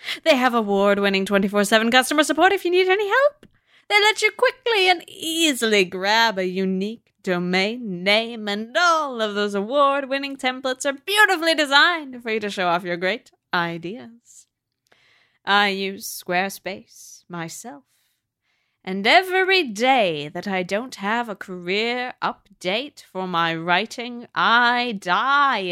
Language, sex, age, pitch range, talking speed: English, female, 20-39, 185-265 Hz, 135 wpm